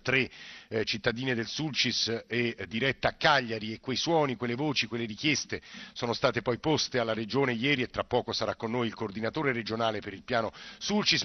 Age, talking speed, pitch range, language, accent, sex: 50-69, 195 wpm, 115-140 Hz, Italian, native, male